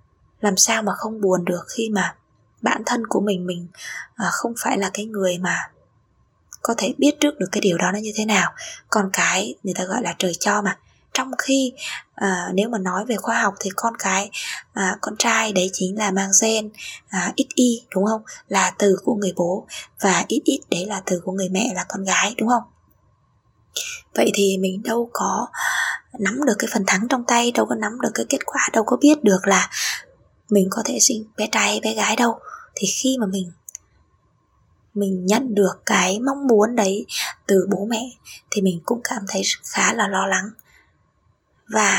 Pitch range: 195-235 Hz